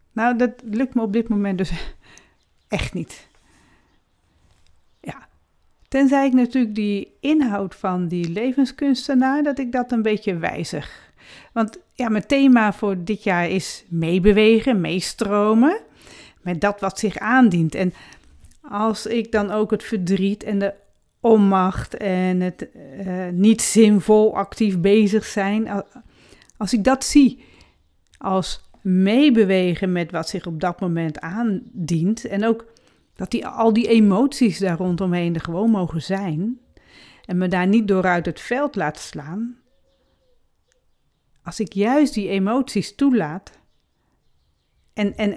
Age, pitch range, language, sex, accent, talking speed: 40-59, 185-235 Hz, Dutch, female, Dutch, 135 wpm